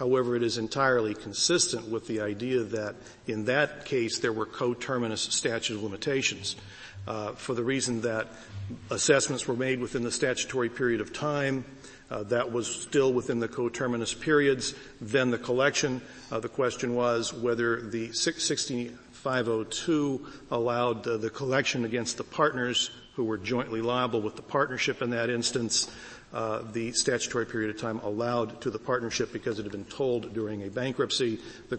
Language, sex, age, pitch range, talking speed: English, male, 50-69, 110-130 Hz, 160 wpm